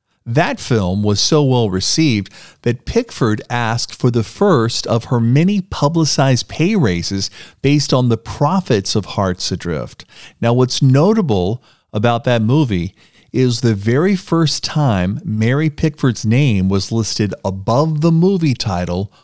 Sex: male